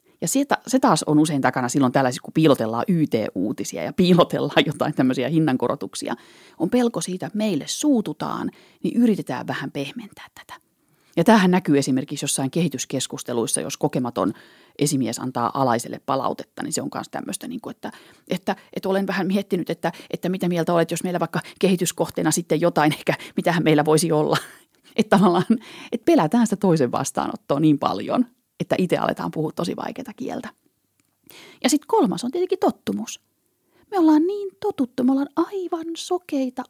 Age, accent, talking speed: 30-49, native, 155 wpm